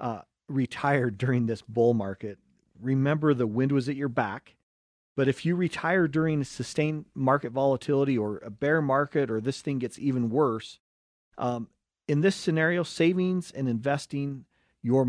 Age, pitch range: 40-59, 115-150 Hz